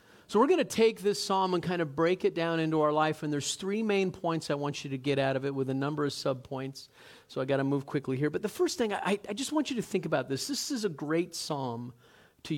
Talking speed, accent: 285 wpm, American